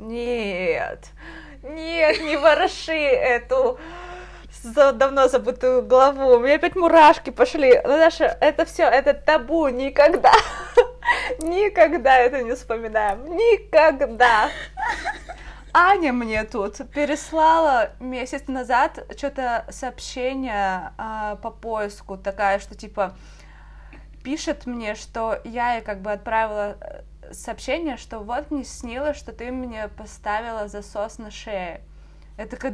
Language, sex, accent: Russian, female, native